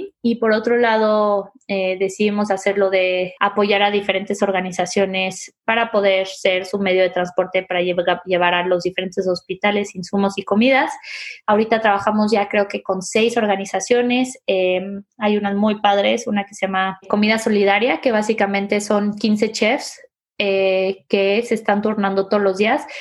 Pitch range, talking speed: 195-230 Hz, 160 wpm